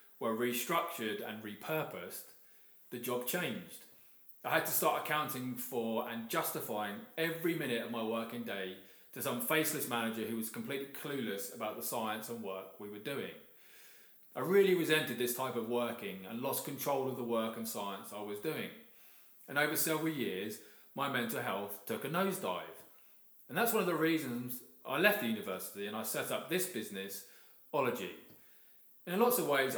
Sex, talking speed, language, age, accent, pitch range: male, 175 wpm, English, 30-49, British, 115-165 Hz